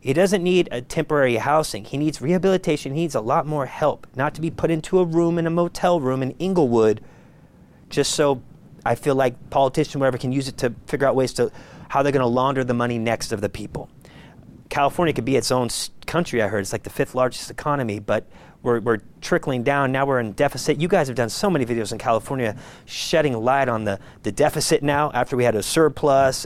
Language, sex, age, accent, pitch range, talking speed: English, male, 30-49, American, 120-155 Hz, 220 wpm